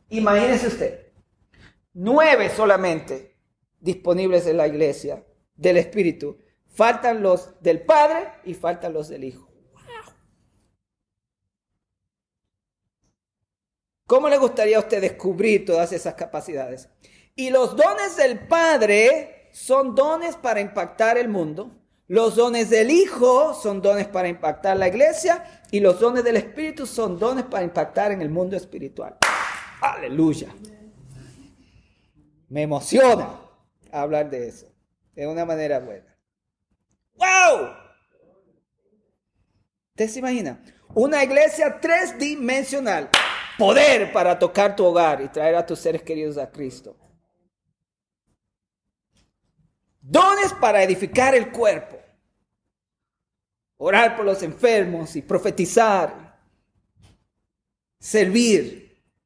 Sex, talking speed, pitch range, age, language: male, 105 wpm, 155-245 Hz, 40-59, Spanish